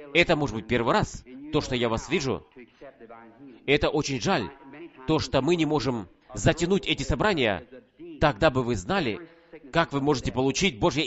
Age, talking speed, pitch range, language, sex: 30-49, 165 wpm, 130-165 Hz, Russian, male